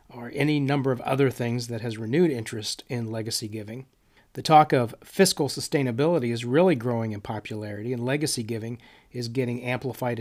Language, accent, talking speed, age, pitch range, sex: English, American, 170 wpm, 40-59, 115-145 Hz, male